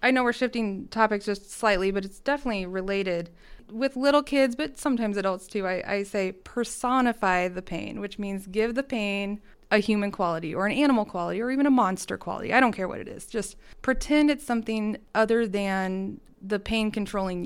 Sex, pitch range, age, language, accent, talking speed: female, 190-225 Hz, 20-39, English, American, 195 wpm